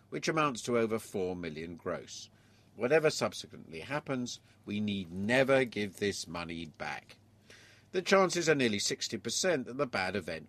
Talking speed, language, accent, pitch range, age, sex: 145 wpm, English, British, 95-125 Hz, 50-69, male